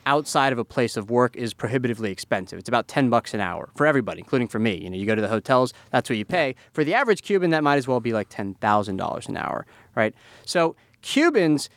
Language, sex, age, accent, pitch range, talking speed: English, male, 30-49, American, 125-180 Hz, 250 wpm